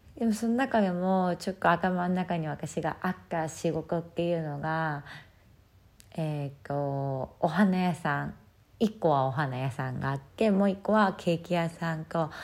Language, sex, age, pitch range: Japanese, female, 20-39, 150-195 Hz